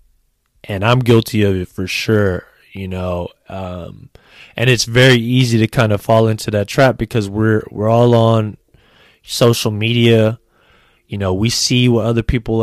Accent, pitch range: American, 105-120 Hz